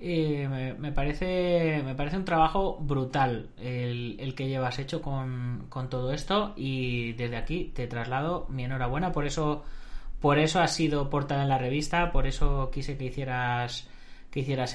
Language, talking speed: Spanish, 165 wpm